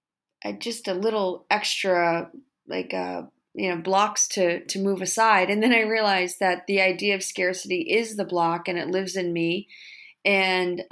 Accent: American